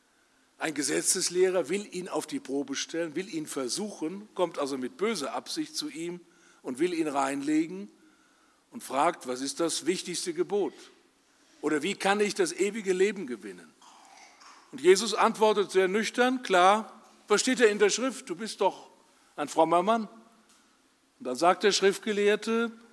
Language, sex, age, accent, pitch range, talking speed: German, male, 50-69, German, 185-275 Hz, 155 wpm